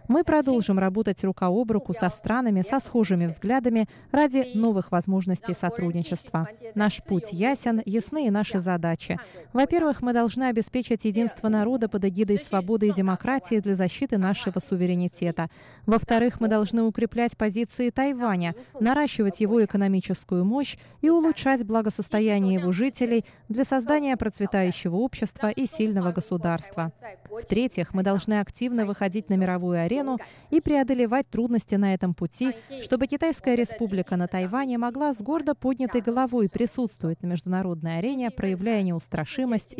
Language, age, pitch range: Russian, 20-39, 185-245 Hz